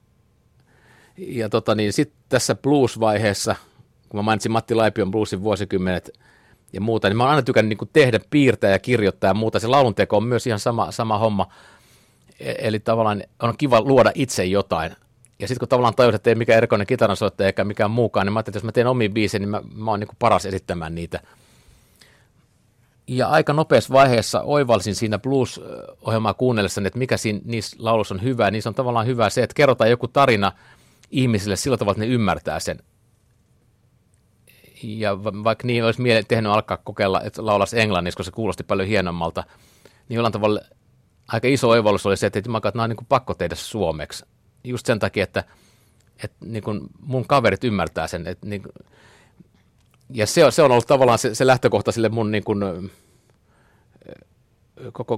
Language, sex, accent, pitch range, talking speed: Finnish, male, native, 105-120 Hz, 175 wpm